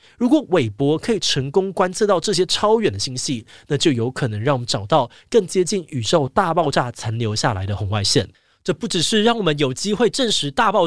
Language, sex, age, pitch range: Chinese, male, 20-39, 125-185 Hz